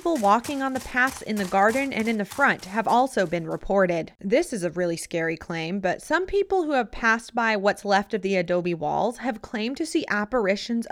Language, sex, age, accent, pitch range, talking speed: English, female, 30-49, American, 195-255 Hz, 215 wpm